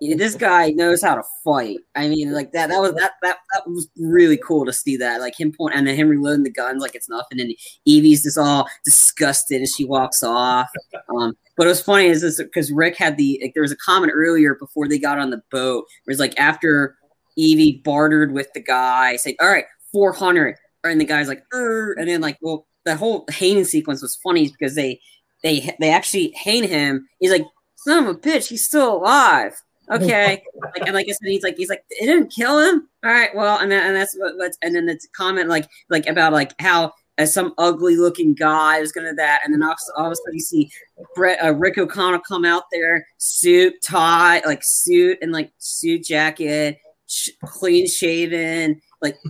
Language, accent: English, American